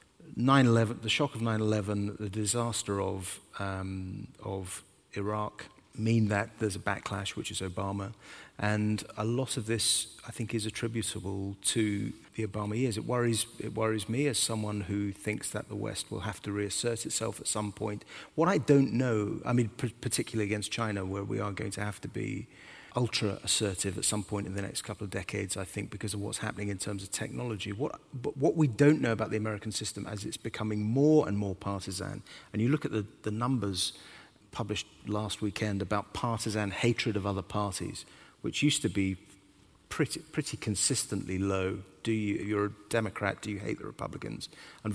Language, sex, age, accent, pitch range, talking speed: English, male, 30-49, British, 100-115 Hz, 190 wpm